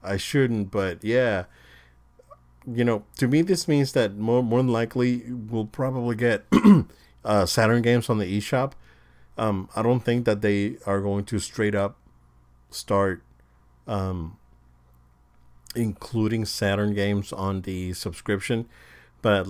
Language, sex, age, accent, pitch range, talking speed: English, male, 40-59, American, 85-110 Hz, 135 wpm